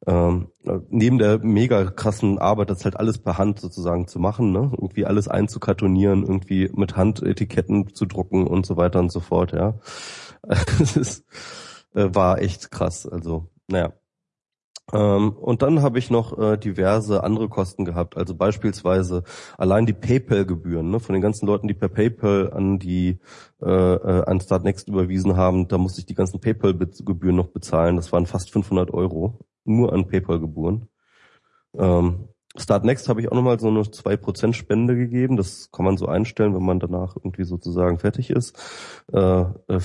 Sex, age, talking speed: male, 20-39, 175 wpm